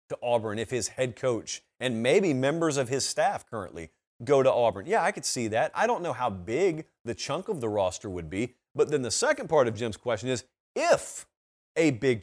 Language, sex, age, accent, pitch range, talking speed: English, male, 40-59, American, 115-160 Hz, 215 wpm